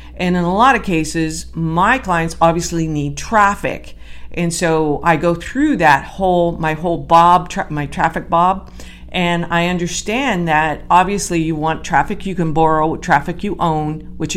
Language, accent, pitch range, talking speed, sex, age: English, American, 145-180 Hz, 165 wpm, female, 50-69